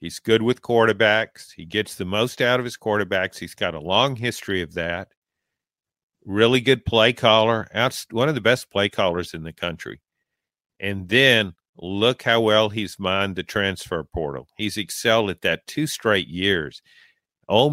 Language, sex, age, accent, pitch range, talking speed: English, male, 50-69, American, 105-135 Hz, 170 wpm